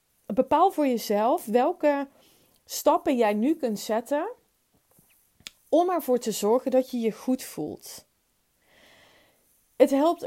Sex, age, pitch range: female, 30-49, 205-265 Hz